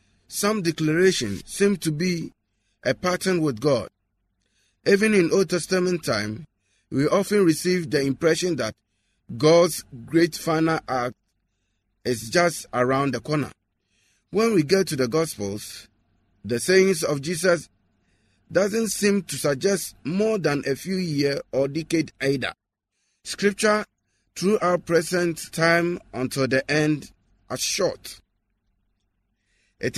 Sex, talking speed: male, 125 wpm